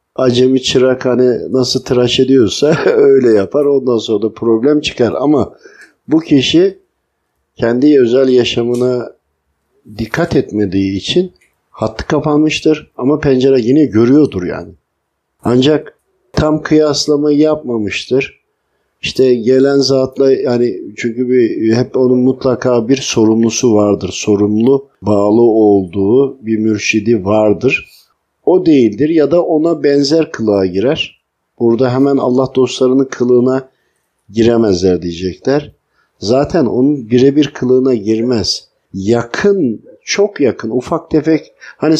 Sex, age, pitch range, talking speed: male, 50-69, 115-155 Hz, 110 wpm